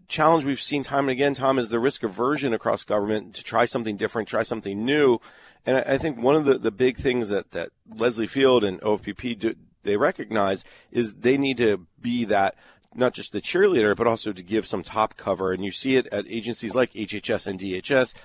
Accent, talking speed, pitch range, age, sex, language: American, 210 wpm, 105-130 Hz, 40-59, male, English